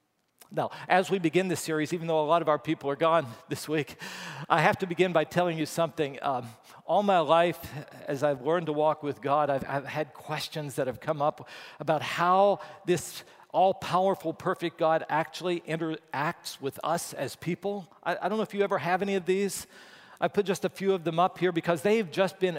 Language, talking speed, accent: English, 215 wpm, American